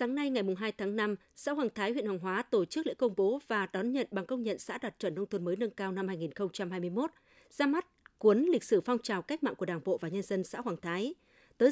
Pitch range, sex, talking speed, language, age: 185-245 Hz, female, 270 wpm, Vietnamese, 20-39